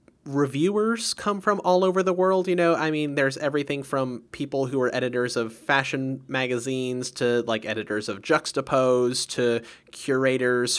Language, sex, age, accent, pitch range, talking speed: English, male, 30-49, American, 110-135 Hz, 155 wpm